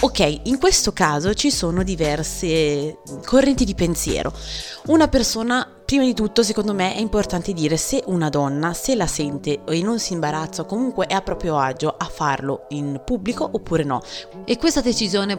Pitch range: 160-215 Hz